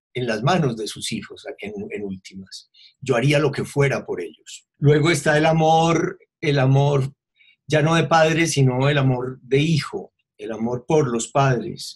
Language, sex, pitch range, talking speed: Spanish, male, 115-140 Hz, 185 wpm